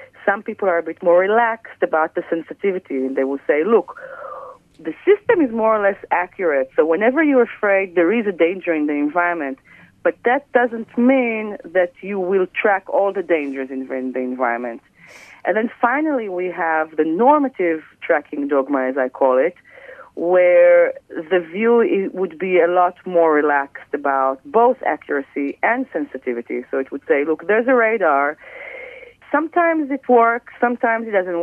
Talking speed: 170 wpm